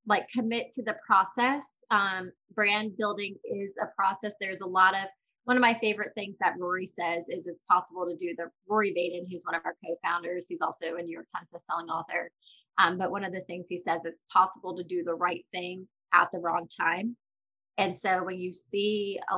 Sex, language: female, English